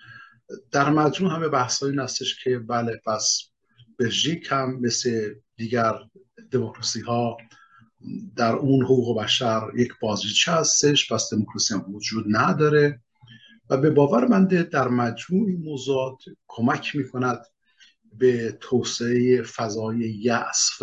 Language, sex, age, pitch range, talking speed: Persian, male, 50-69, 115-145 Hz, 120 wpm